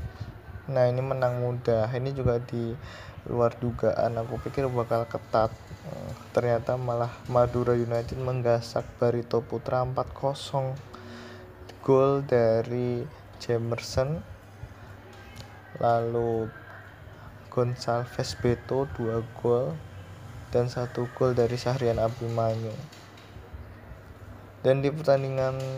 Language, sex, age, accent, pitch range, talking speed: Indonesian, male, 20-39, native, 110-125 Hz, 90 wpm